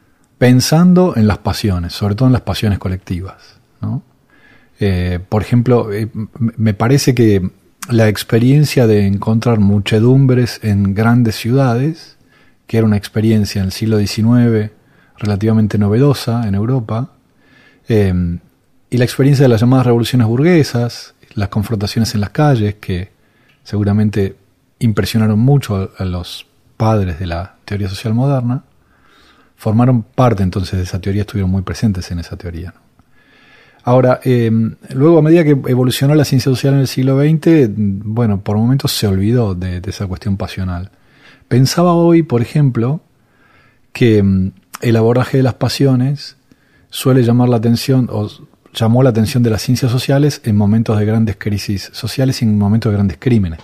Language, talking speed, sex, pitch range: Spanish, 150 wpm, male, 100-130 Hz